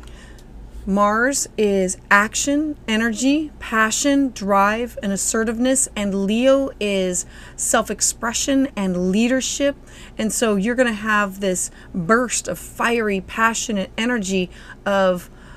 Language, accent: English, American